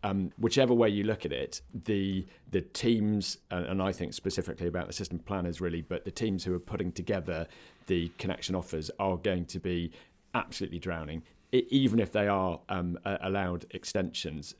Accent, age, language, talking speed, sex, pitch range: British, 40-59, English, 175 wpm, male, 85-105 Hz